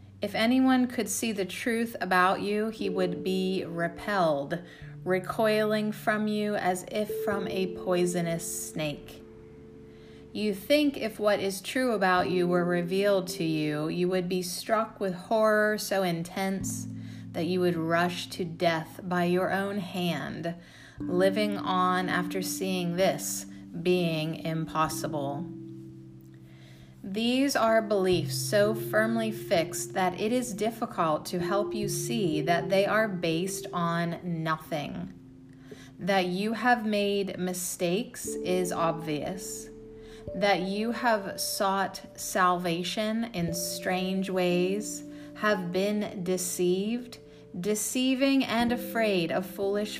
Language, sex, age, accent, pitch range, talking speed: English, female, 30-49, American, 155-205 Hz, 120 wpm